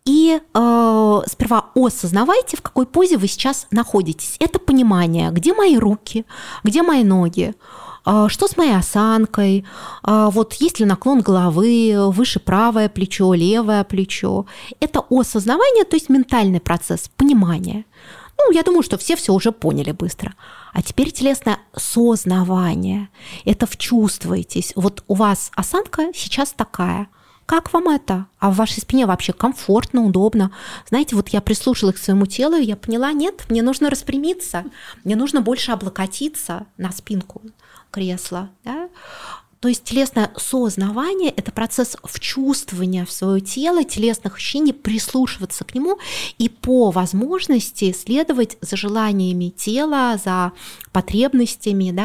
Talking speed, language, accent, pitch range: 135 wpm, Russian, native, 195-255 Hz